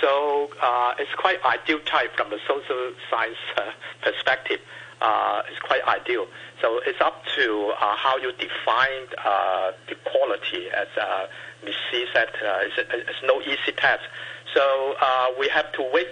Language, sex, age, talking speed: English, male, 60-79, 165 wpm